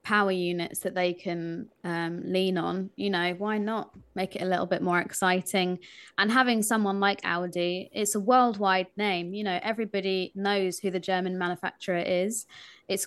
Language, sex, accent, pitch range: English, female, British, 185-220 Hz